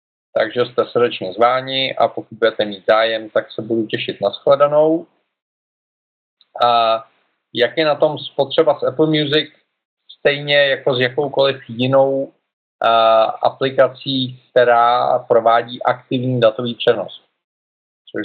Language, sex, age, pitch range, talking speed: Czech, male, 40-59, 110-135 Hz, 120 wpm